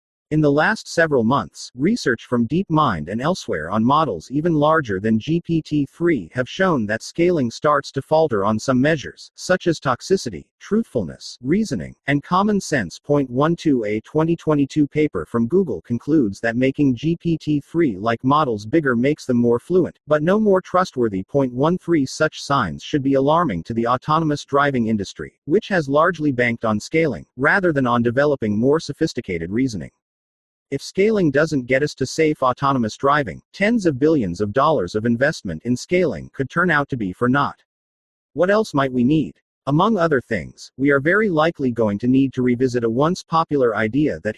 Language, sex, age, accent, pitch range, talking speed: English, male, 40-59, American, 120-160 Hz, 170 wpm